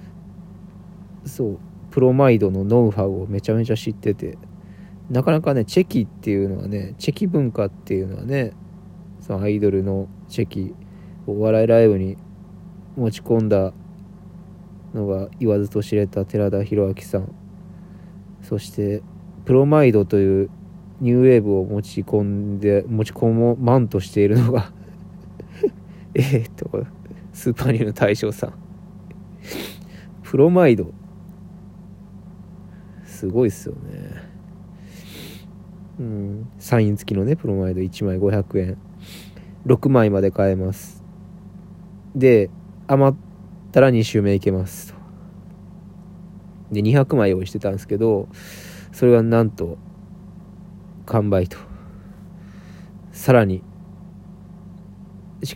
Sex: male